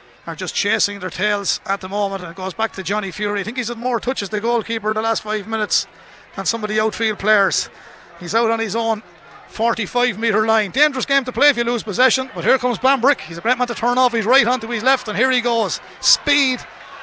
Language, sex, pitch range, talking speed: English, male, 215-255 Hz, 250 wpm